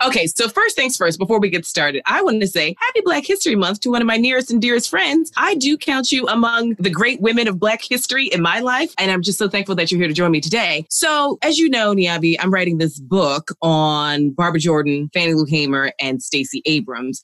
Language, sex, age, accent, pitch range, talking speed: English, female, 30-49, American, 155-250 Hz, 240 wpm